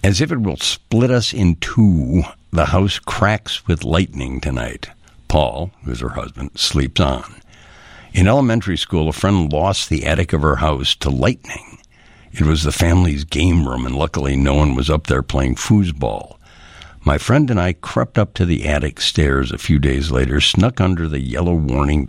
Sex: male